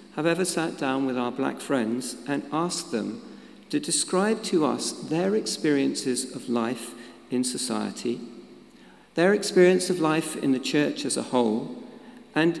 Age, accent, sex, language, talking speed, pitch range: 50-69, British, male, English, 150 wpm, 130-165 Hz